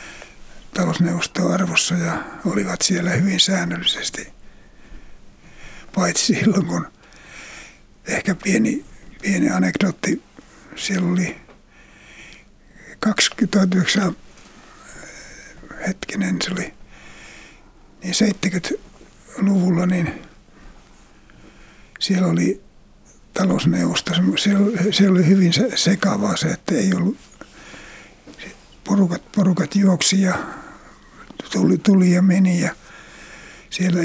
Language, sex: Finnish, male